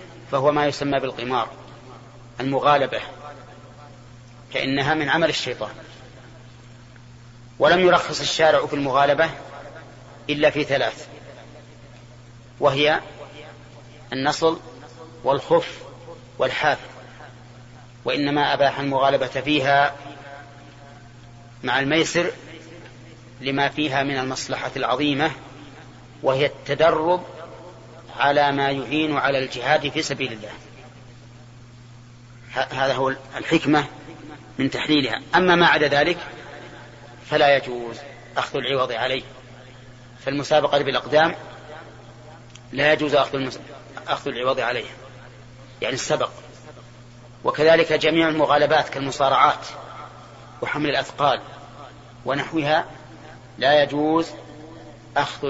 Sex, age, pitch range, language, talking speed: male, 30-49, 120-145 Hz, Arabic, 85 wpm